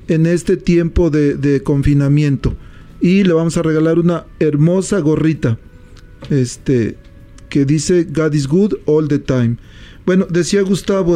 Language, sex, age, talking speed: Spanish, male, 40-59, 140 wpm